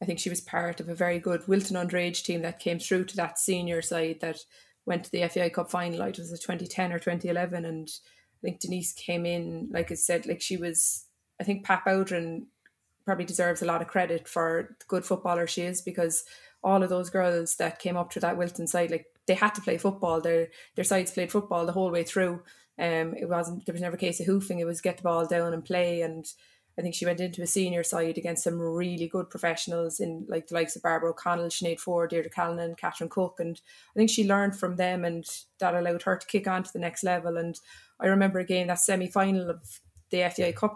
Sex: female